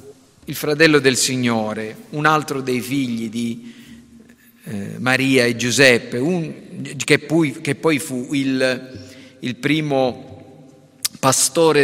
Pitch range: 130-190 Hz